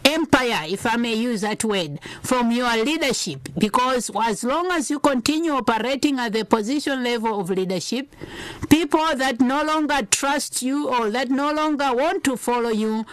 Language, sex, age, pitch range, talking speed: English, female, 60-79, 210-285 Hz, 170 wpm